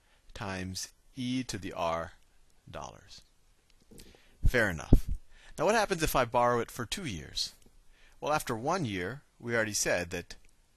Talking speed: 145 wpm